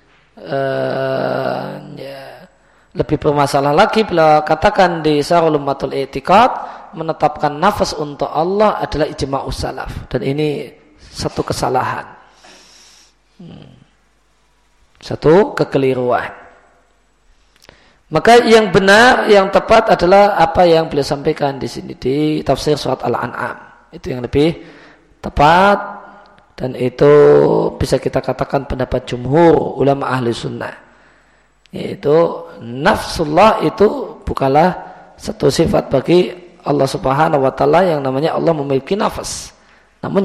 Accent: native